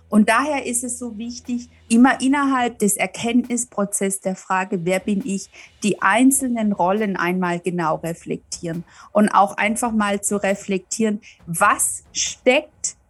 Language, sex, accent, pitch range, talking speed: German, female, German, 200-255 Hz, 135 wpm